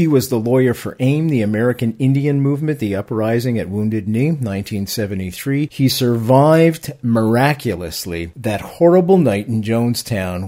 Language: English